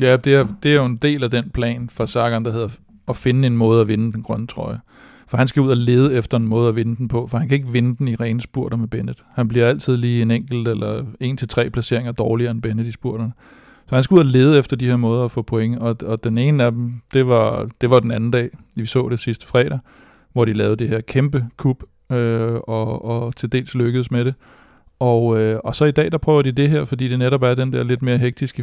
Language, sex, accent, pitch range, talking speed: Danish, male, native, 115-130 Hz, 275 wpm